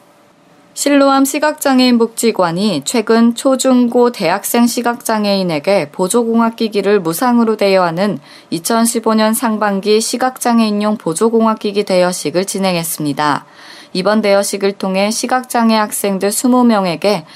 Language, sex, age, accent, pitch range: Korean, female, 20-39, native, 190-235 Hz